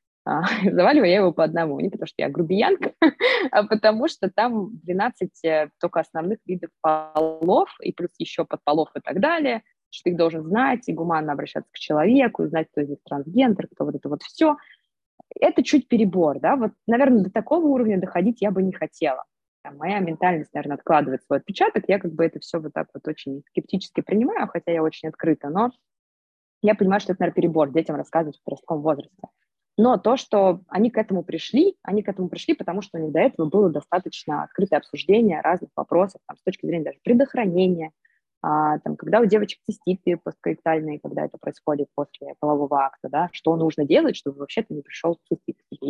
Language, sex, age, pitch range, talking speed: Russian, female, 20-39, 160-220 Hz, 190 wpm